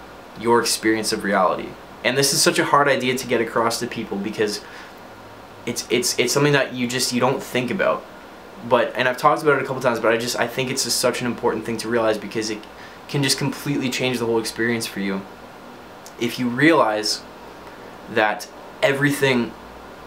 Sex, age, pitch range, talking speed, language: male, 20-39, 115-135 Hz, 195 wpm, English